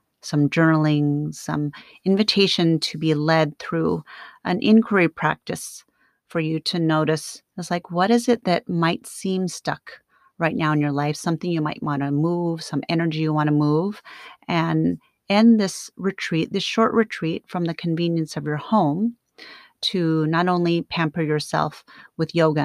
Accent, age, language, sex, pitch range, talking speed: American, 30-49, English, female, 145-180 Hz, 160 wpm